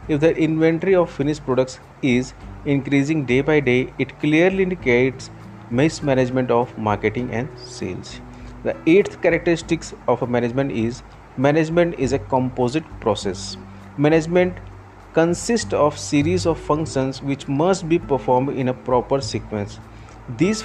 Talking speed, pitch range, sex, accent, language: 135 wpm, 115-150 Hz, male, Indian, English